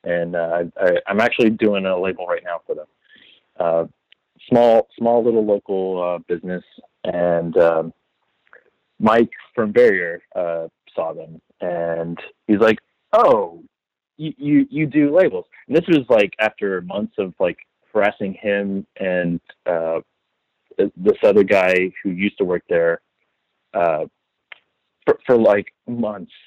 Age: 30-49